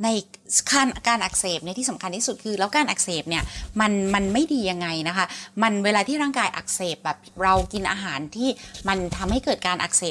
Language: Thai